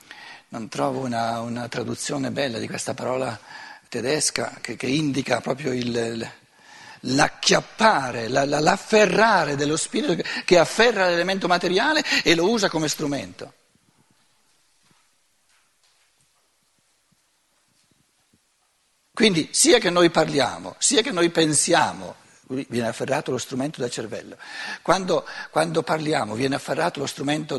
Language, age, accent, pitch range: Italian, 60-79, native, 130-195 Hz